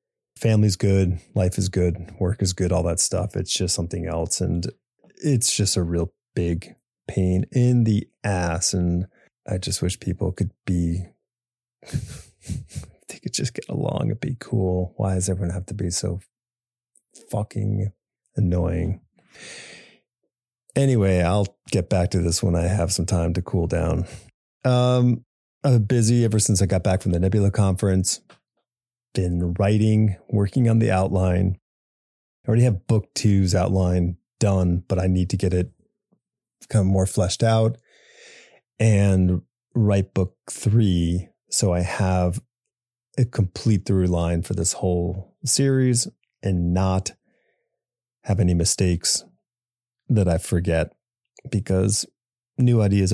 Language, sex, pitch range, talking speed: English, male, 90-115 Hz, 140 wpm